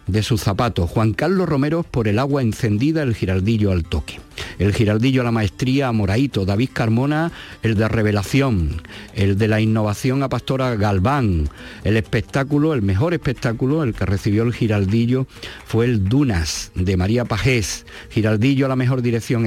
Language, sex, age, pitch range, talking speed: Spanish, male, 50-69, 100-130 Hz, 165 wpm